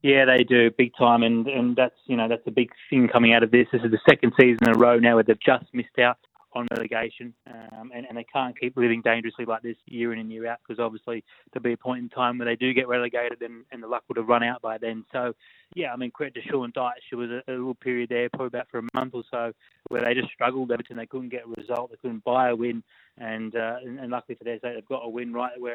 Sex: male